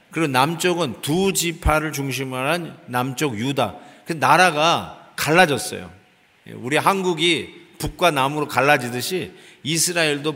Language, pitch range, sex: Korean, 145-185 Hz, male